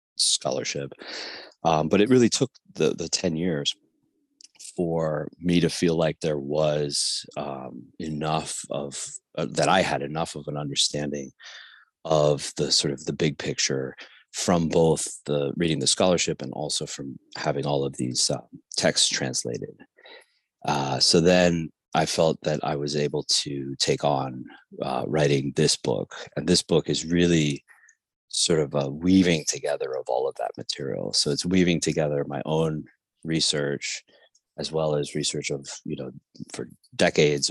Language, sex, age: English, male, 30-49